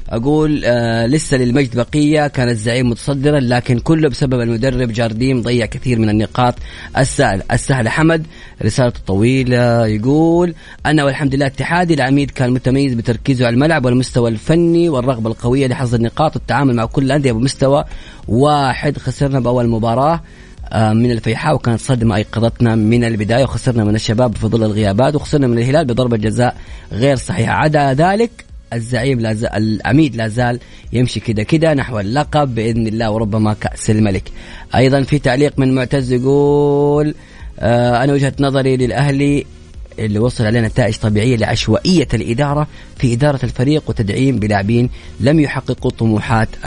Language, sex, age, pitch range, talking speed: Arabic, female, 30-49, 115-140 Hz, 140 wpm